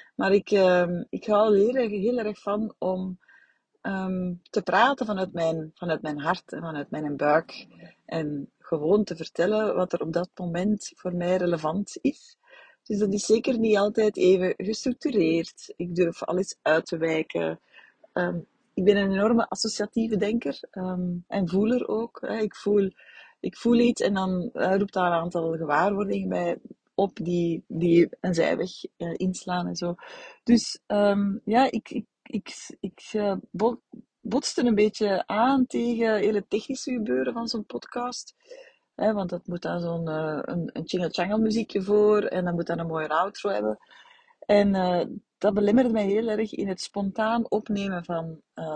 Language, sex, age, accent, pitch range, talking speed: Dutch, female, 30-49, Dutch, 175-220 Hz, 165 wpm